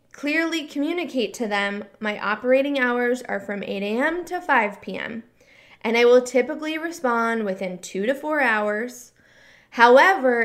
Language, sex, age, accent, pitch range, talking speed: English, female, 20-39, American, 225-280 Hz, 145 wpm